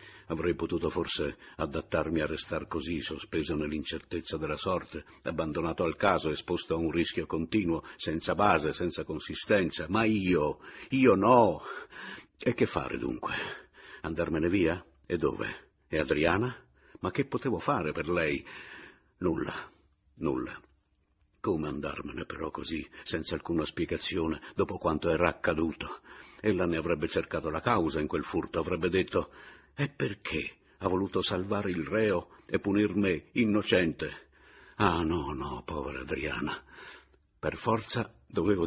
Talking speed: 130 wpm